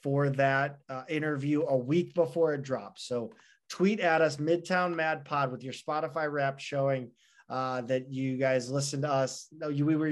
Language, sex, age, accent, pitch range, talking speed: English, male, 20-39, American, 130-155 Hz, 190 wpm